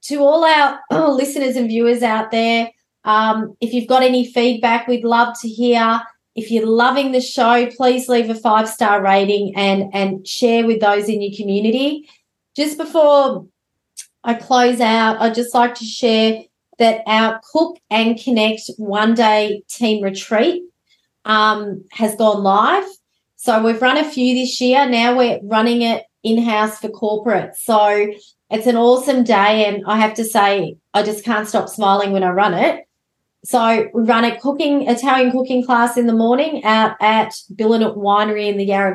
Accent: Australian